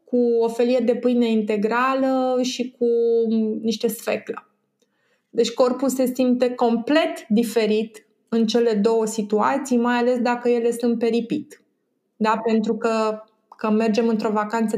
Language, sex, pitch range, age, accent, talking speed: Romanian, female, 210-240 Hz, 20-39, native, 130 wpm